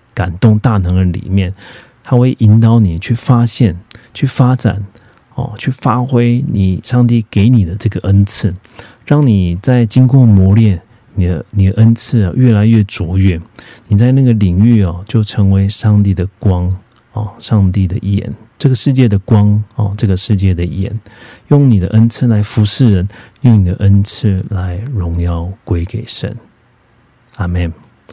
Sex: male